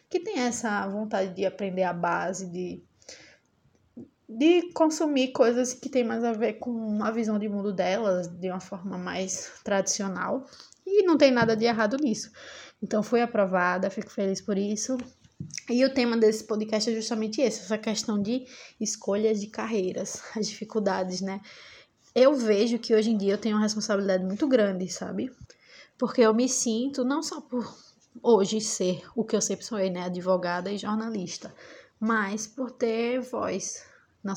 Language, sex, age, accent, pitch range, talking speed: Portuguese, female, 20-39, Brazilian, 190-235 Hz, 165 wpm